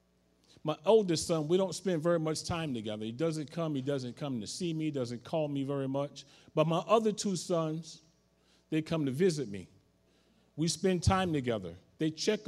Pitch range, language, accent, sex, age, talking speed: 150-195 Hz, English, American, male, 40-59, 195 wpm